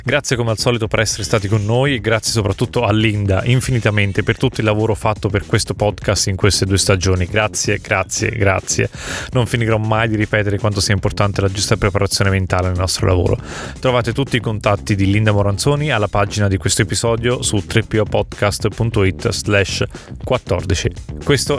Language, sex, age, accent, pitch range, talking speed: Italian, male, 30-49, native, 100-115 Hz, 165 wpm